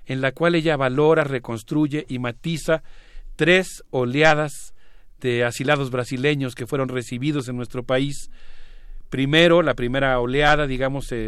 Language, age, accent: Spanish, 40-59, Mexican